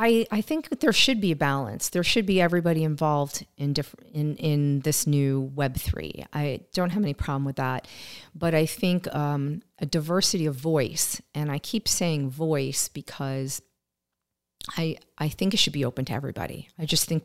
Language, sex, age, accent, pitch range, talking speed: English, female, 40-59, American, 145-180 Hz, 190 wpm